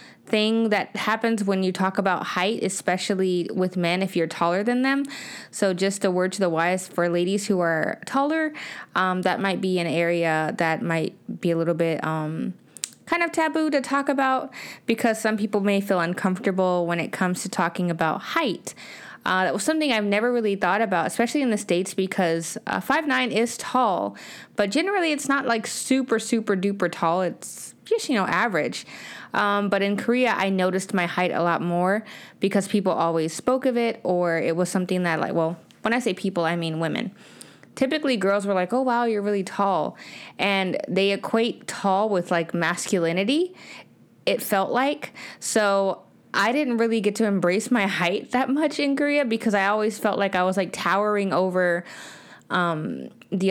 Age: 20-39